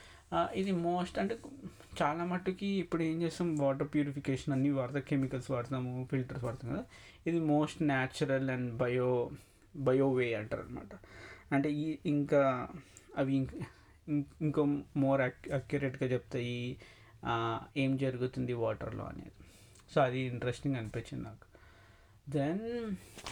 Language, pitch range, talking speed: Telugu, 130-170 Hz, 110 wpm